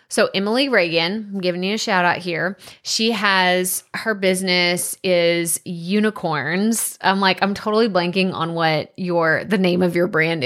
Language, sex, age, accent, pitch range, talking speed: English, female, 20-39, American, 170-220 Hz, 165 wpm